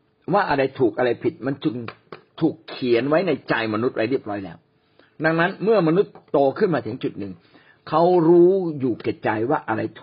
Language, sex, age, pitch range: Thai, male, 60-79, 125-170 Hz